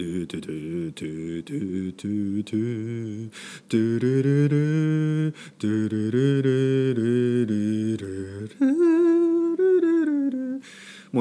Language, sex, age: Japanese, male, 40-59